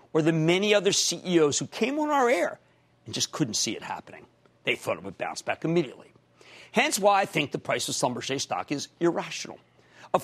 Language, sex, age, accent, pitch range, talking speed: English, male, 50-69, American, 160-245 Hz, 205 wpm